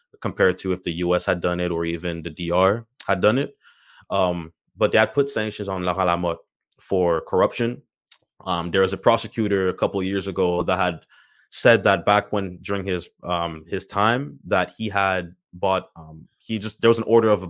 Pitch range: 90-105 Hz